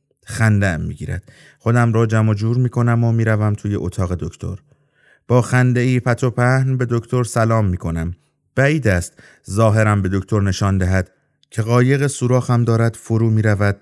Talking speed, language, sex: 150 wpm, Persian, male